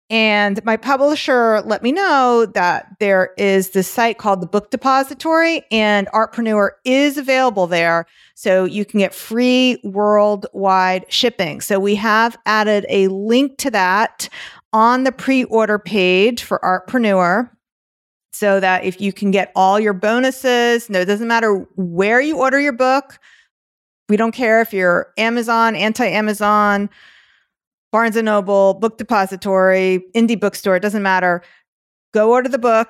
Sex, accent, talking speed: female, American, 150 wpm